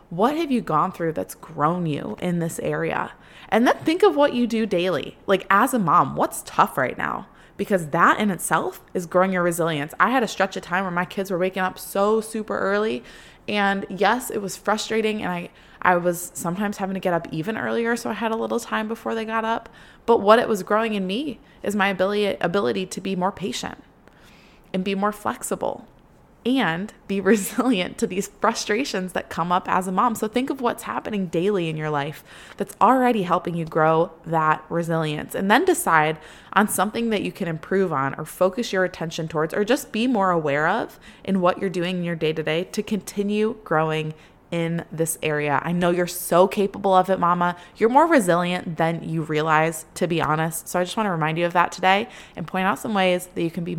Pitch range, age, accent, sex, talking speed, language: 165-210 Hz, 20-39, American, female, 215 wpm, English